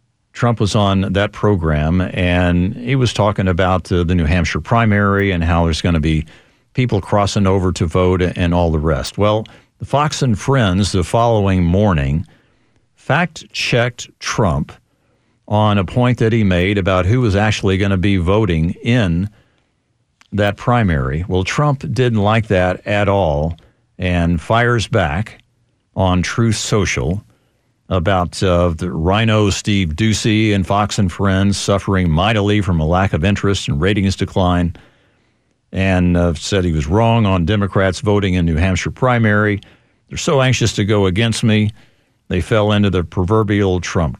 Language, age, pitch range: English, 50-69, 90-115 Hz